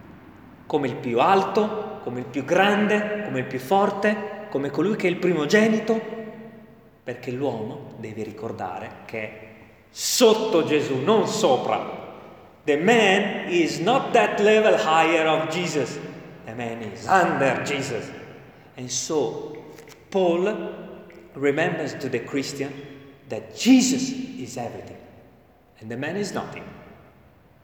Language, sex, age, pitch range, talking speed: Italian, male, 30-49, 140-220 Hz, 125 wpm